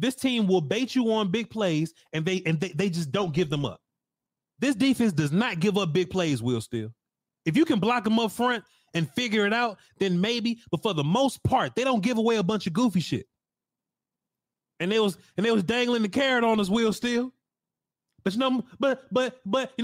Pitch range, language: 160-235 Hz, English